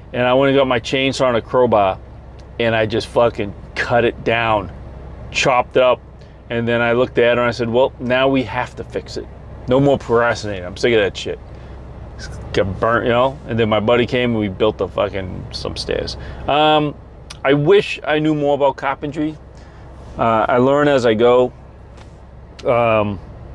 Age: 30-49